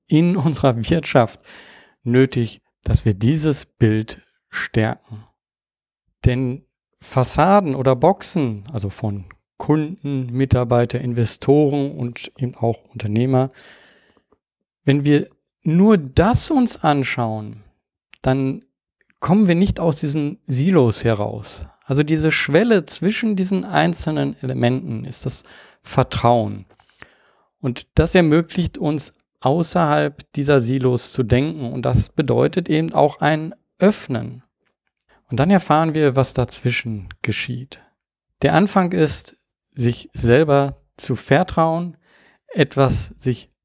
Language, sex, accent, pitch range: German, male, German, 120-160 Hz